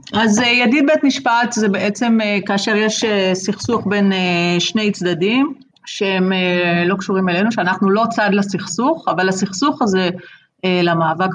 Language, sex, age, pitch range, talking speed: Hebrew, female, 30-49, 175-220 Hz, 125 wpm